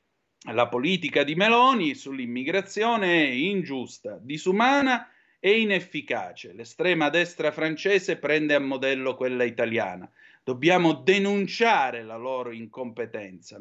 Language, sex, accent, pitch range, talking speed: Italian, male, native, 120-160 Hz, 100 wpm